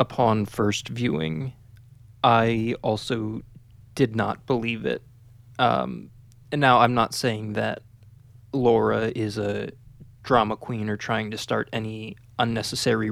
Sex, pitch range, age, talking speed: male, 110-125 Hz, 20-39, 125 wpm